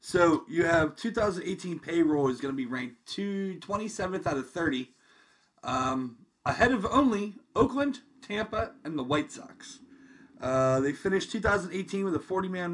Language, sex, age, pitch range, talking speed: English, male, 30-49, 135-200 Hz, 145 wpm